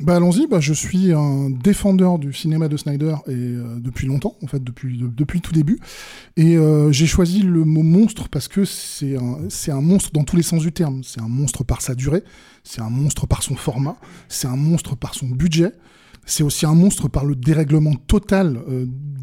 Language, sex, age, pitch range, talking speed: French, male, 20-39, 130-165 Hz, 220 wpm